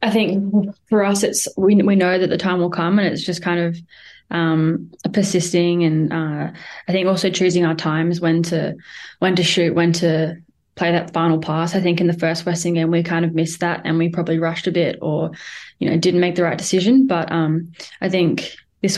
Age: 10-29